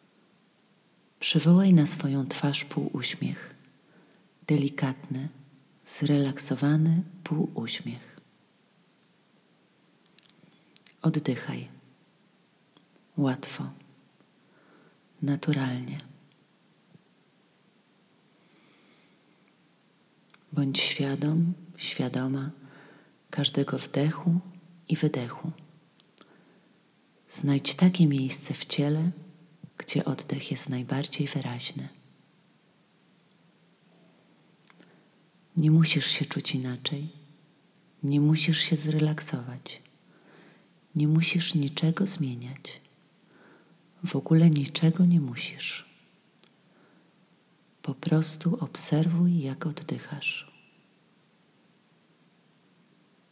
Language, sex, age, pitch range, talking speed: Polish, female, 40-59, 140-165 Hz, 55 wpm